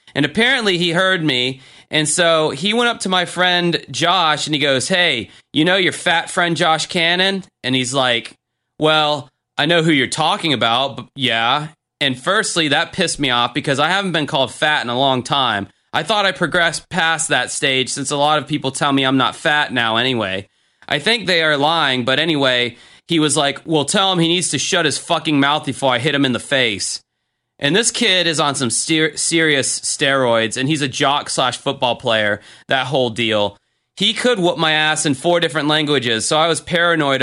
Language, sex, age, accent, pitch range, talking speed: English, male, 30-49, American, 125-160 Hz, 210 wpm